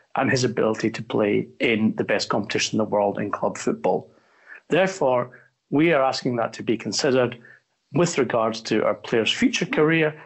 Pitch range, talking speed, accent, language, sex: 110-150 Hz, 175 wpm, British, English, male